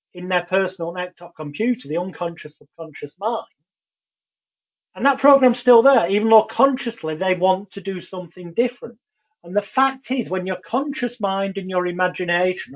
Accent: British